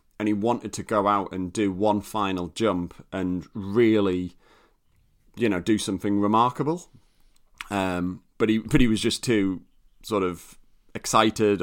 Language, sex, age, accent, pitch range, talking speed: English, male, 30-49, British, 95-115 Hz, 150 wpm